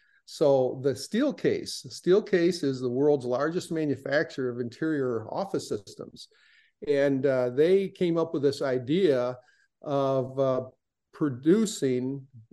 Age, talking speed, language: 50-69, 120 wpm, English